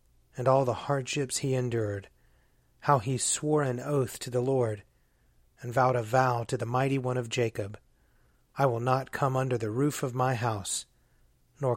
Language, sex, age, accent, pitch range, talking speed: English, male, 30-49, American, 120-135 Hz, 180 wpm